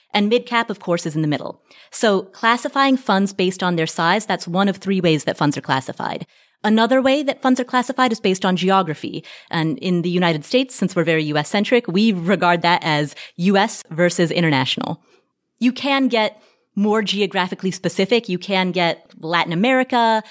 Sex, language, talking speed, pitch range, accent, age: female, English, 180 wpm, 175-235 Hz, American, 30-49